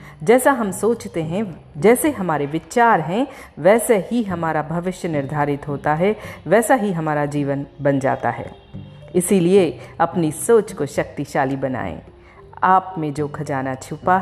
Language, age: Hindi, 40-59